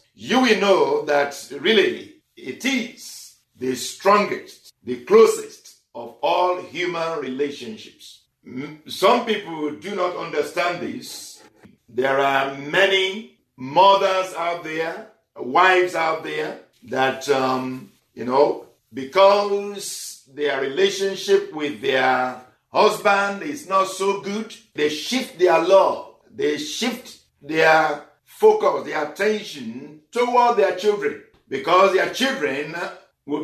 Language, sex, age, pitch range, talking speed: English, male, 60-79, 155-225 Hz, 110 wpm